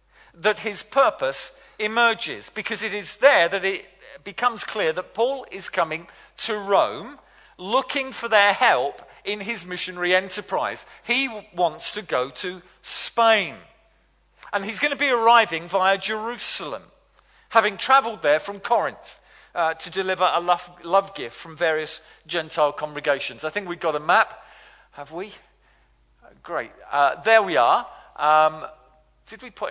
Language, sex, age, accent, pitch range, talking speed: English, male, 50-69, British, 155-210 Hz, 145 wpm